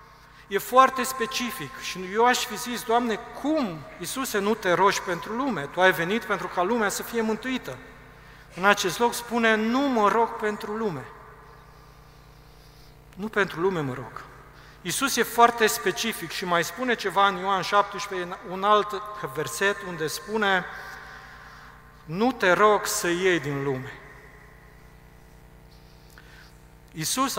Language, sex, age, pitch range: Romanian, male, 40-59, 170-230 Hz